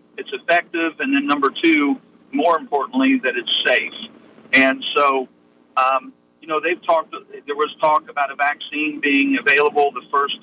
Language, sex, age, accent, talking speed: English, male, 50-69, American, 160 wpm